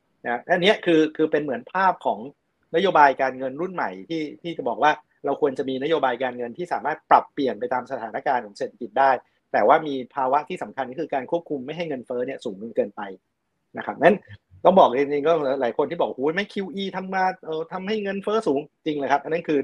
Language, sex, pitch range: Thai, male, 130-170 Hz